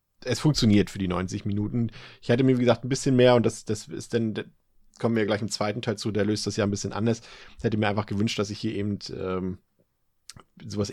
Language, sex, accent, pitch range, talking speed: German, male, German, 100-115 Hz, 245 wpm